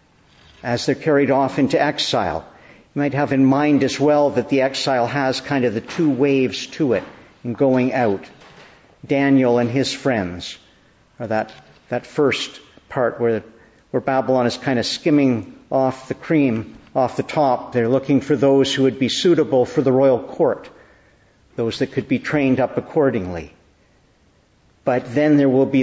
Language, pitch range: English, 120-140 Hz